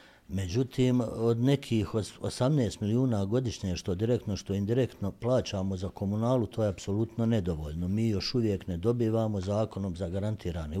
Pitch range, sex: 105-135 Hz, male